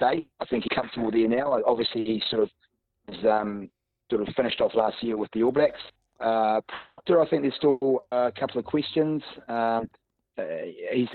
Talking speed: 180 wpm